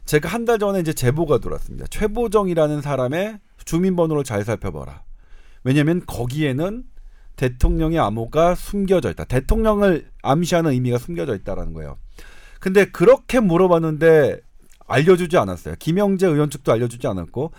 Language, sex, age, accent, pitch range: Korean, male, 40-59, native, 130-190 Hz